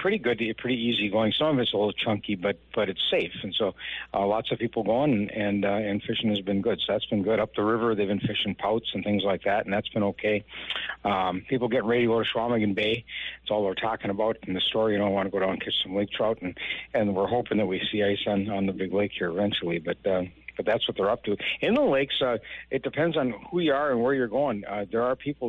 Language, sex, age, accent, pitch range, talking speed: English, male, 60-79, American, 95-115 Hz, 280 wpm